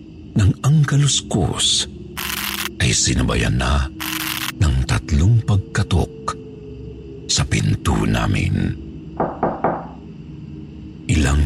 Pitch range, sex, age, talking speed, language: 75-115 Hz, male, 50-69, 65 wpm, Filipino